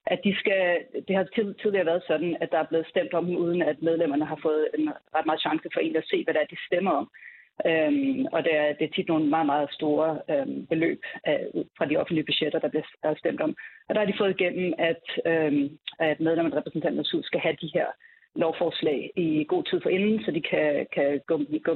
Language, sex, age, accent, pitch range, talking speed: Danish, female, 30-49, native, 155-195 Hz, 230 wpm